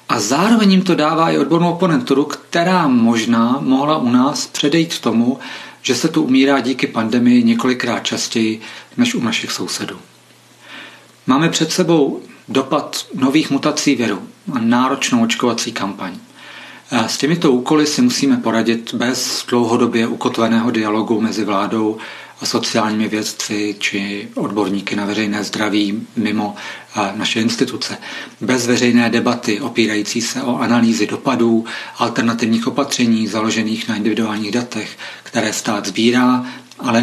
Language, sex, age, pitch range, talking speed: Czech, male, 40-59, 115-150 Hz, 130 wpm